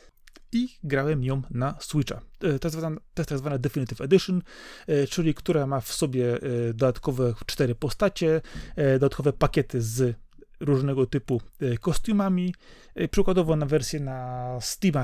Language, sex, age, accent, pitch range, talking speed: Polish, male, 30-49, native, 130-170 Hz, 120 wpm